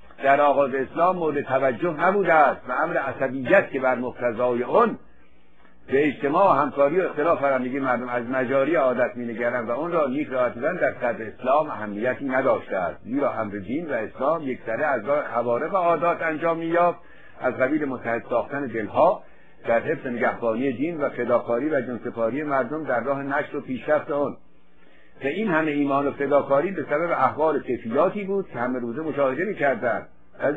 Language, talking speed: Persian, 170 wpm